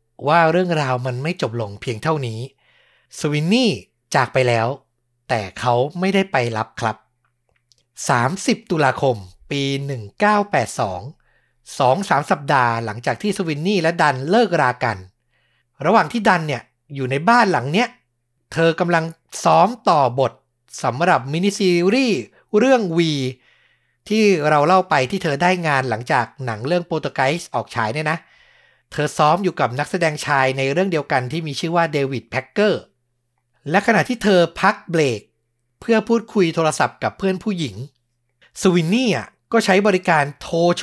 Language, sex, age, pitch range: Thai, male, 60-79, 125-185 Hz